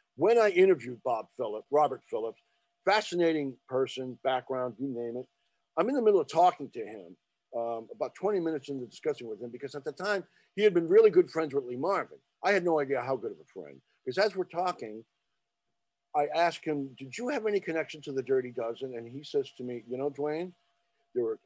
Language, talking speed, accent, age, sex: English, 215 wpm, American, 50-69, male